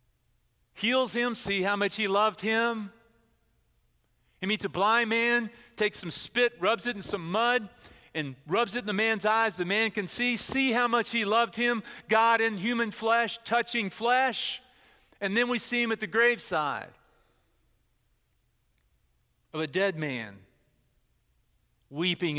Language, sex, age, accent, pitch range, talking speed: English, male, 40-59, American, 135-215 Hz, 155 wpm